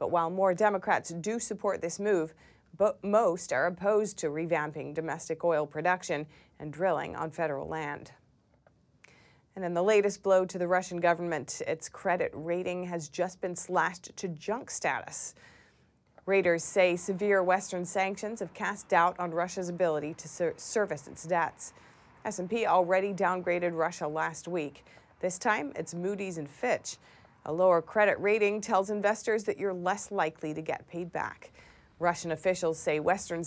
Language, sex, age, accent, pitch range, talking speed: English, female, 30-49, American, 165-195 Hz, 155 wpm